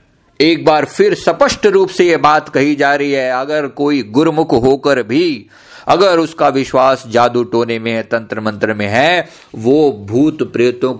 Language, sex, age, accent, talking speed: Hindi, male, 50-69, native, 170 wpm